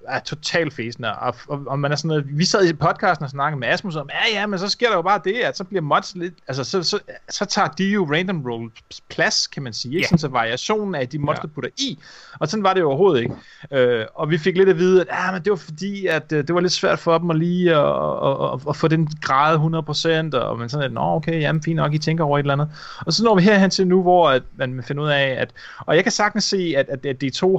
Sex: male